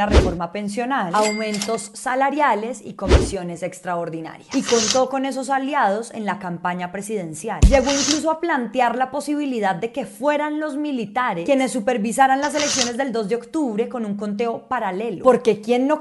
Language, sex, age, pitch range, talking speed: Spanish, female, 20-39, 195-265 Hz, 155 wpm